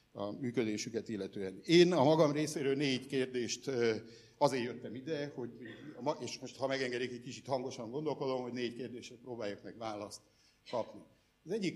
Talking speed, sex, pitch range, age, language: 155 wpm, male, 120-150 Hz, 60-79, Hungarian